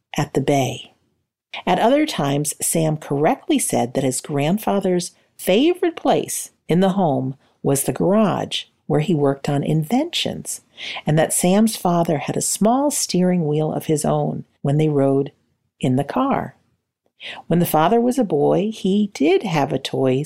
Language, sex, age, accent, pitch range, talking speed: English, female, 50-69, American, 145-230 Hz, 160 wpm